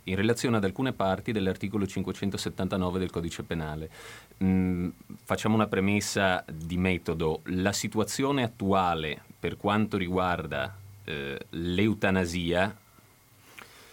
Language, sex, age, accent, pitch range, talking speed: Italian, male, 30-49, native, 85-110 Hz, 105 wpm